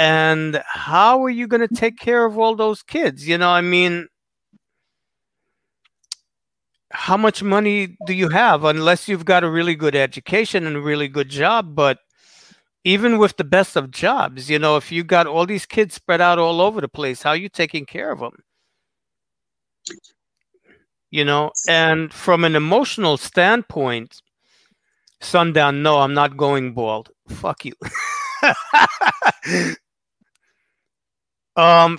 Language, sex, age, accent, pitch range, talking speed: English, male, 50-69, American, 150-195 Hz, 145 wpm